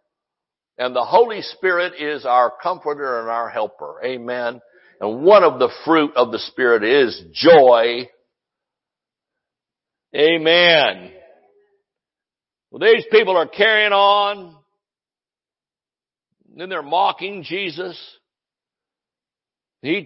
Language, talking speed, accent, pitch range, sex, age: English, 100 wpm, American, 125-175 Hz, male, 60-79